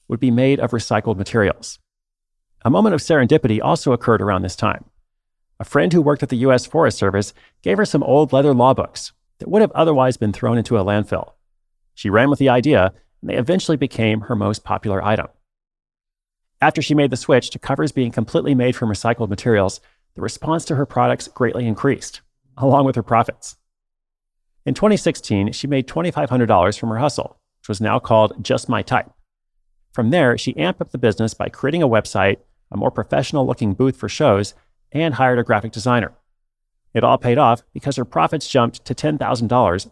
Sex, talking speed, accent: male, 185 wpm, American